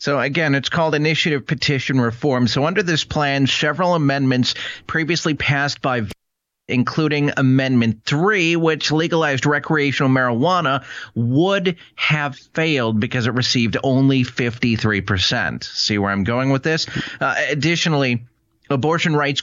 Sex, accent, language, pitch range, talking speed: male, American, English, 120-155 Hz, 130 wpm